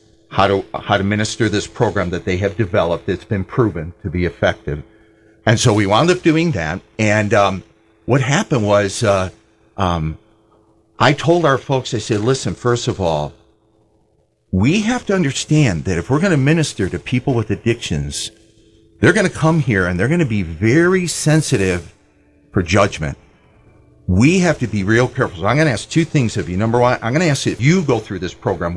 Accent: American